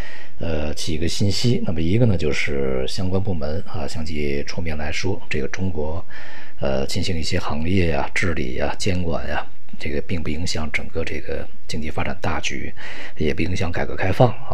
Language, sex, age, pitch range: Chinese, male, 50-69, 75-95 Hz